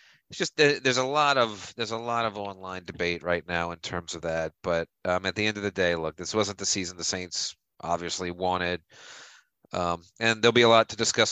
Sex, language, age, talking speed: male, English, 30-49, 230 wpm